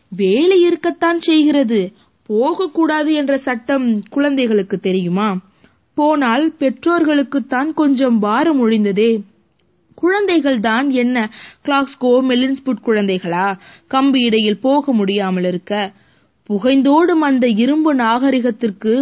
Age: 20-39